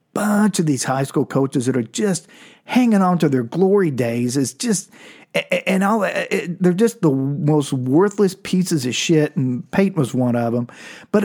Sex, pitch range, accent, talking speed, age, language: male, 125-185 Hz, American, 180 wpm, 40-59, English